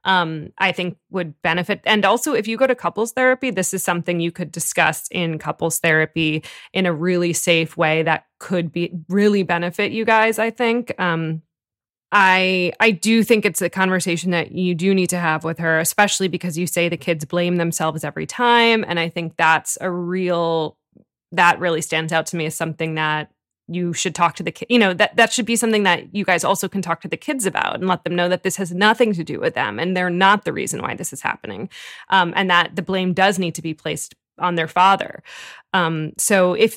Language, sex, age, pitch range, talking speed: English, female, 20-39, 165-195 Hz, 220 wpm